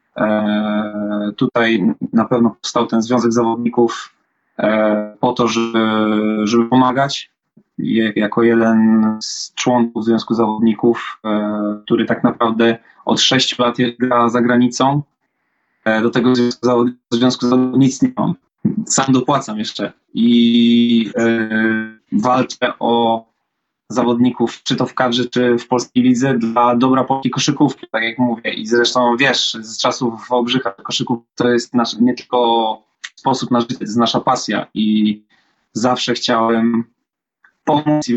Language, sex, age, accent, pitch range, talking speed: Polish, male, 20-39, native, 115-125 Hz, 135 wpm